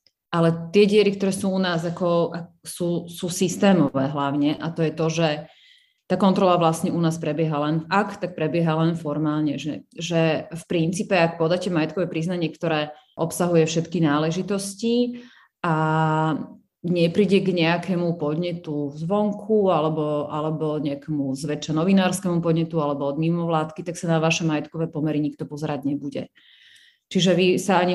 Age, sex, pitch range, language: 30-49, female, 155-180 Hz, Slovak